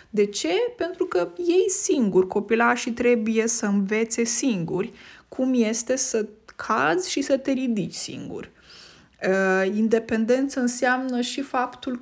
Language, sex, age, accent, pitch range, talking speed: Romanian, female, 20-39, native, 200-250 Hz, 120 wpm